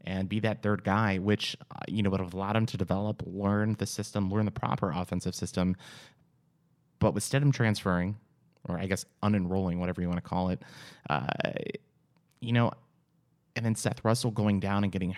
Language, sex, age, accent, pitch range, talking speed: English, male, 30-49, American, 95-115 Hz, 190 wpm